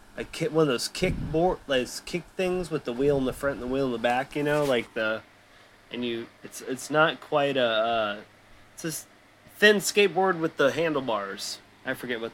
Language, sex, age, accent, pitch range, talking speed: English, male, 30-49, American, 110-145 Hz, 215 wpm